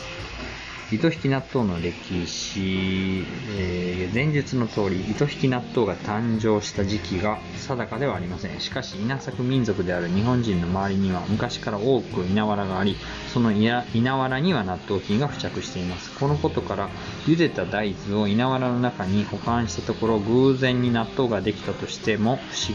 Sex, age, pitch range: male, 20-39, 95-130 Hz